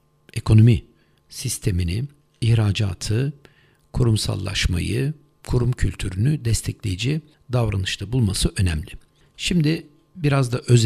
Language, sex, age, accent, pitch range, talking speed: Turkish, male, 60-79, native, 105-135 Hz, 75 wpm